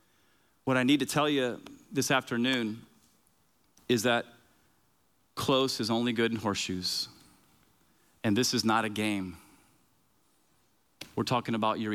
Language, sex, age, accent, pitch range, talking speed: English, male, 40-59, American, 100-125 Hz, 130 wpm